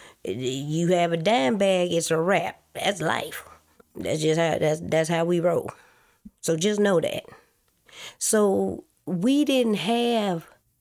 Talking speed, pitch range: 145 wpm, 160-210 Hz